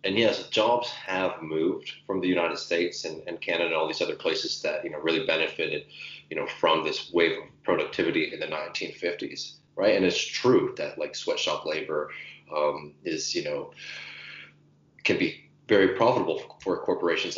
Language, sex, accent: English, male, American